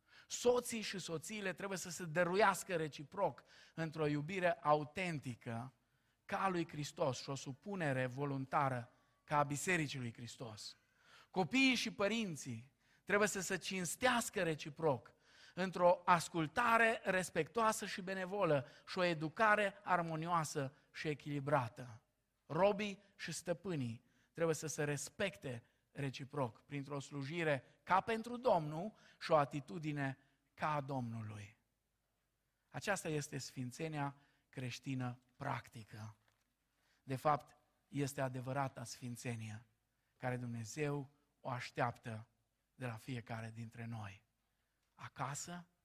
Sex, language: male, Romanian